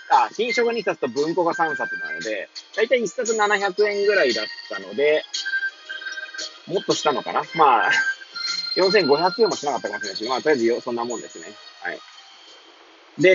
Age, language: 20-39, Japanese